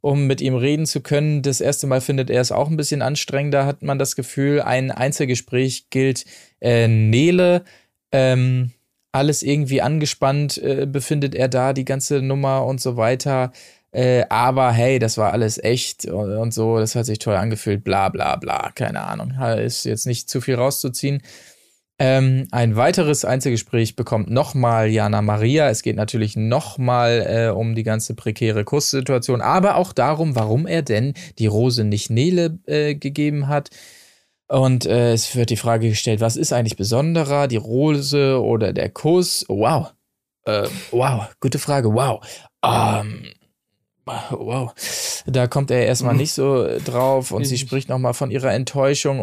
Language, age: German, 20-39